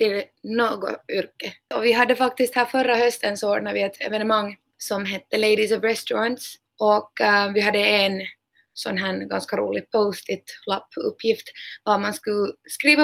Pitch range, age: 205-245 Hz, 20-39